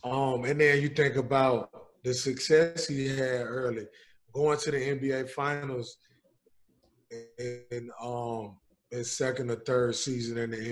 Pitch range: 120-150 Hz